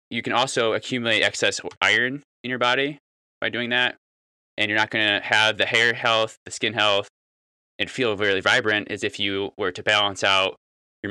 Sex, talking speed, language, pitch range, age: male, 195 wpm, English, 70-115 Hz, 20-39